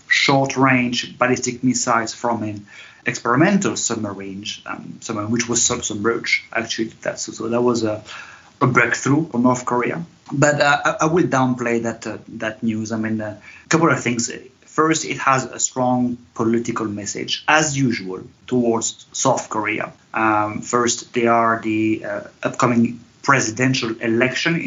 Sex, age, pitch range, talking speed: male, 30-49, 115-135 Hz, 150 wpm